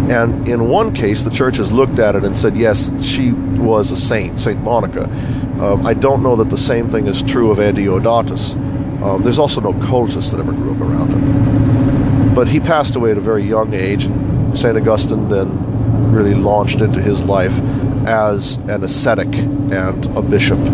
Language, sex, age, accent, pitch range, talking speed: English, male, 50-69, American, 115-140 Hz, 190 wpm